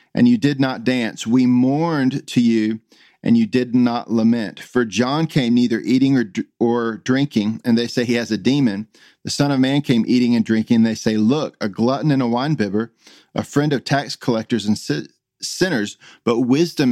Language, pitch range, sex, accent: English, 115-140 Hz, male, American